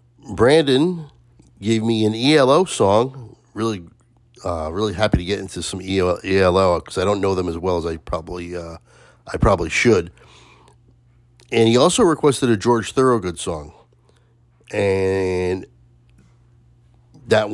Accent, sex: American, male